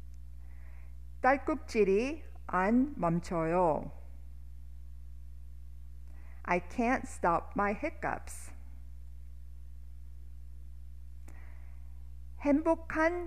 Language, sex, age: English, female, 50-69